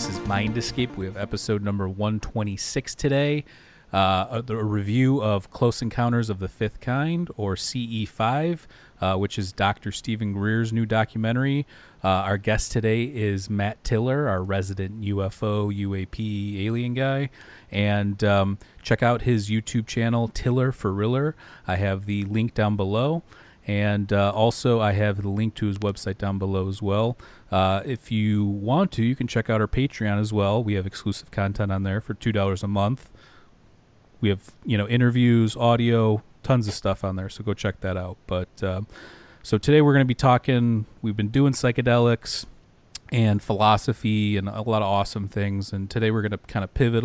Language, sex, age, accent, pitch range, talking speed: English, male, 30-49, American, 100-115 Hz, 180 wpm